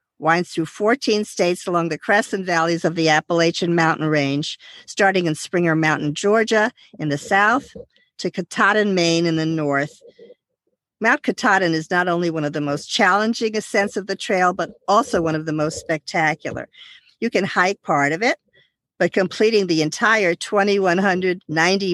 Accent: American